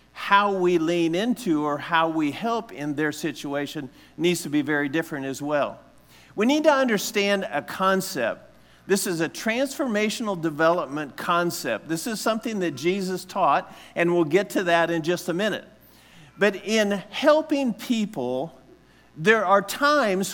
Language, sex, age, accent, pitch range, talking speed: English, male, 50-69, American, 165-215 Hz, 155 wpm